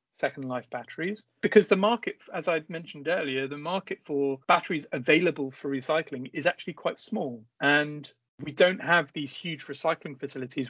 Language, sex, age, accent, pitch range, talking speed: English, male, 40-59, British, 140-170 Hz, 170 wpm